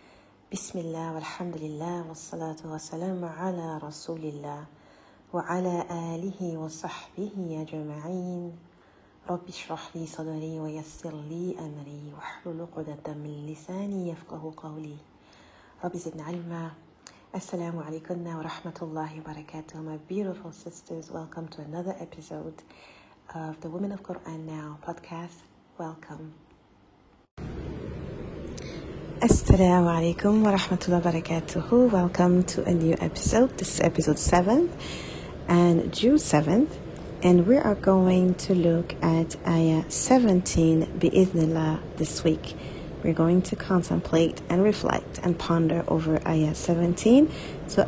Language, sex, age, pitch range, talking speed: English, female, 40-59, 160-180 Hz, 110 wpm